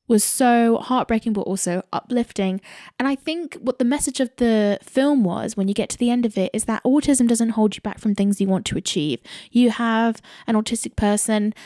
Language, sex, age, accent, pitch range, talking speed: English, female, 10-29, British, 195-240 Hz, 215 wpm